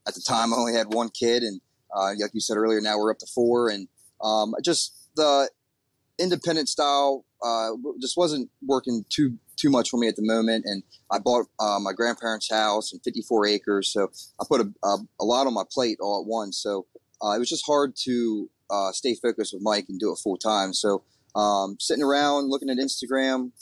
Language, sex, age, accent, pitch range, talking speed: English, male, 30-49, American, 105-125 Hz, 215 wpm